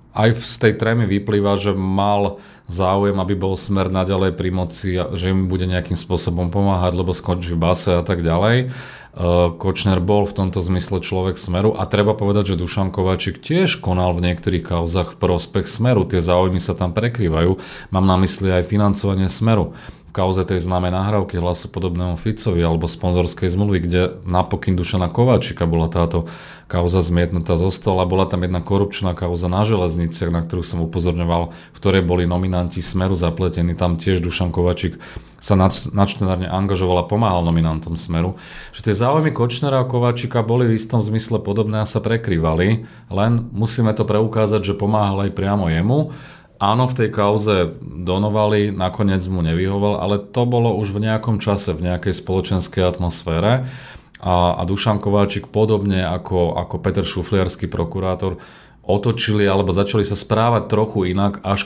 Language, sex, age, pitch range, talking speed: Slovak, male, 30-49, 90-105 Hz, 165 wpm